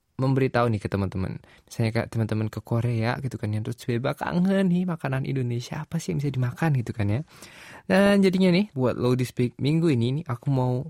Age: 20-39